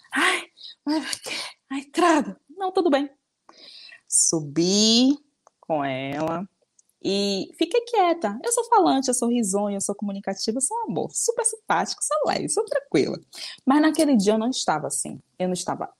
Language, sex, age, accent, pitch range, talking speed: Portuguese, female, 20-39, Brazilian, 175-285 Hz, 150 wpm